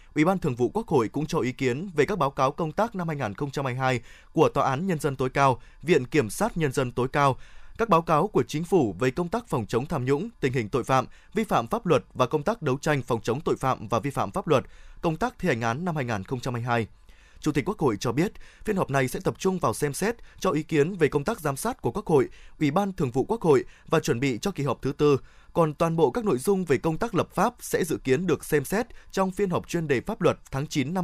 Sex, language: male, Vietnamese